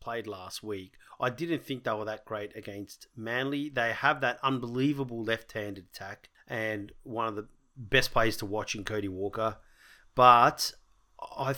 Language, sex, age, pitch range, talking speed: English, male, 30-49, 110-135 Hz, 160 wpm